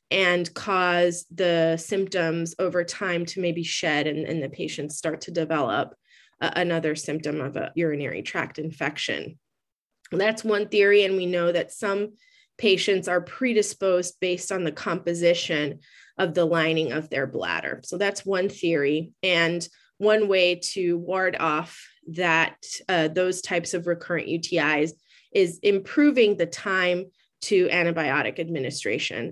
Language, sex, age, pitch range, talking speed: English, female, 20-39, 165-190 Hz, 140 wpm